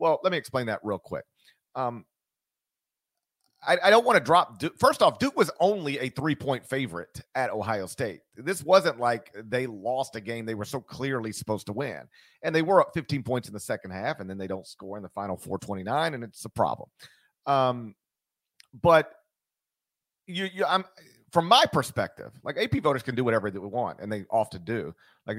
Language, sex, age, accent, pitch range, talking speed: English, male, 40-59, American, 110-145 Hz, 200 wpm